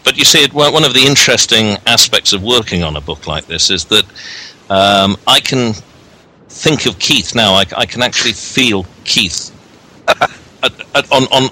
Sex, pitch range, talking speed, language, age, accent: male, 95-120 Hz, 165 wpm, English, 50-69, British